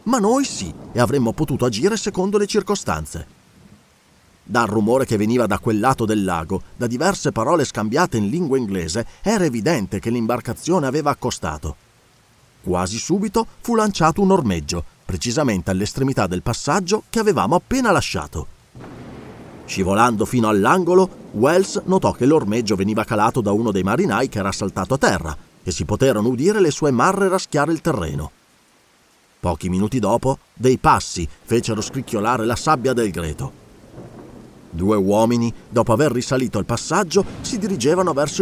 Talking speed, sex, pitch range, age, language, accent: 150 wpm, male, 105-175 Hz, 40-59, Italian, native